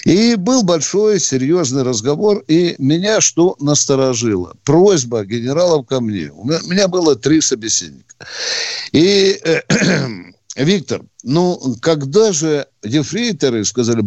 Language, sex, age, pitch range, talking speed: Russian, male, 60-79, 130-200 Hz, 120 wpm